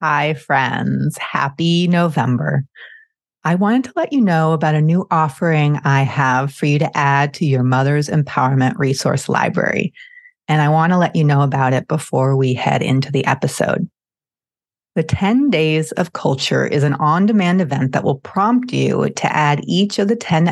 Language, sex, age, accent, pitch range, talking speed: English, female, 30-49, American, 140-180 Hz, 175 wpm